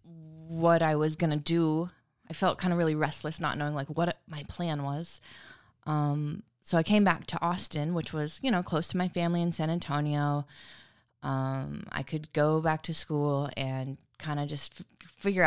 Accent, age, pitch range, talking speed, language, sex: American, 20-39, 145-180 Hz, 185 wpm, English, female